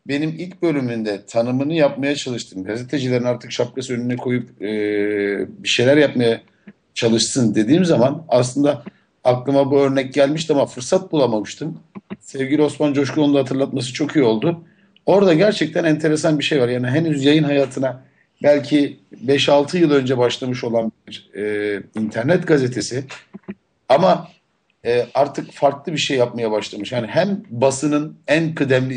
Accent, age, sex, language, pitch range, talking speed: native, 50-69, male, Turkish, 120-155 Hz, 140 wpm